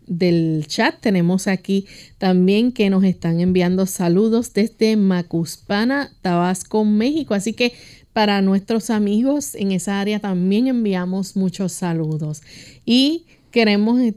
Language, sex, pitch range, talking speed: Spanish, female, 180-220 Hz, 120 wpm